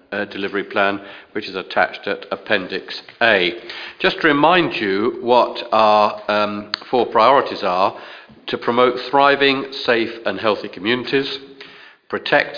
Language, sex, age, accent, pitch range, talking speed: English, male, 50-69, British, 105-125 Hz, 130 wpm